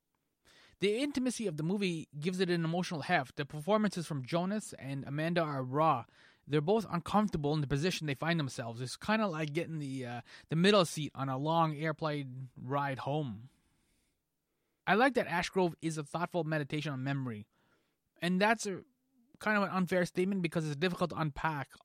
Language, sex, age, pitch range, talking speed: English, male, 20-39, 135-180 Hz, 180 wpm